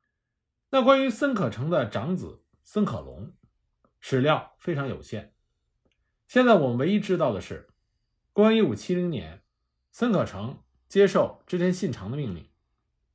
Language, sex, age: Chinese, male, 50-69